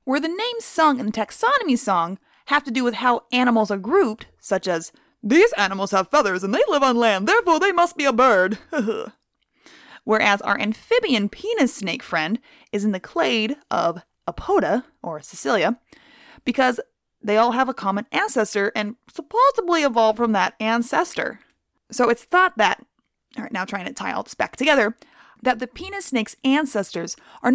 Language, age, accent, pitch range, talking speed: English, 20-39, American, 215-320 Hz, 175 wpm